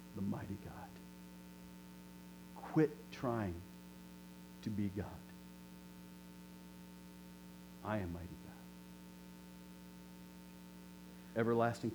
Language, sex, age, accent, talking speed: English, male, 50-69, American, 65 wpm